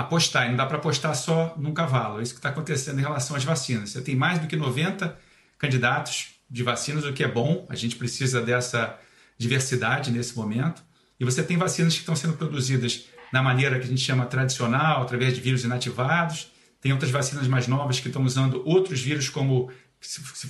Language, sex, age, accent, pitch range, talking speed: Portuguese, male, 40-59, Brazilian, 125-160 Hz, 200 wpm